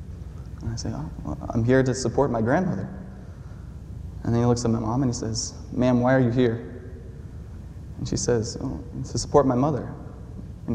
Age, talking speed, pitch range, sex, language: 20-39, 195 wpm, 105-125 Hz, male, English